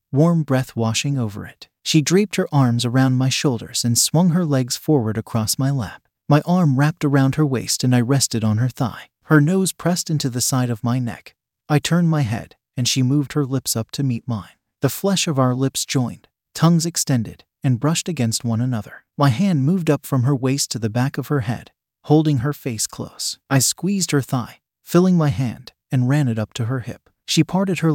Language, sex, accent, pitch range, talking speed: English, male, American, 120-155 Hz, 215 wpm